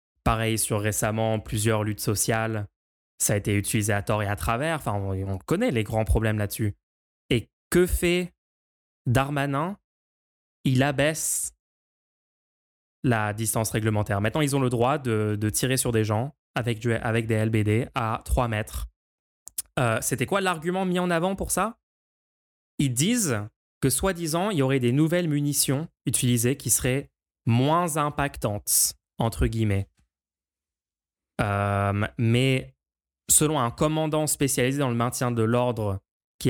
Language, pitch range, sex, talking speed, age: French, 105-135 Hz, male, 145 wpm, 20-39